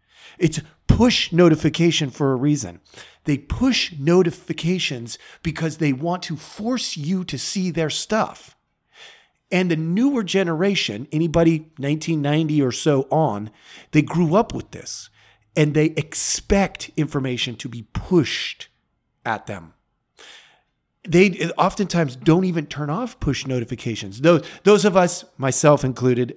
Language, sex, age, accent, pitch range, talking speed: English, male, 40-59, American, 135-180 Hz, 125 wpm